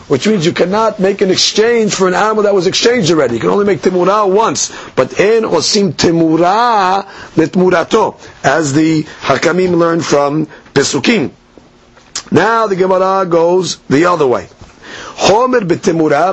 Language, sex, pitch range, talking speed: English, male, 160-210 Hz, 145 wpm